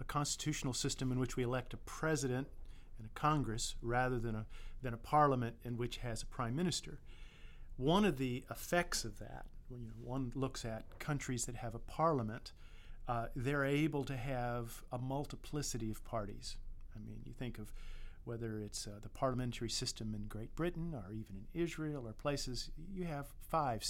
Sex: male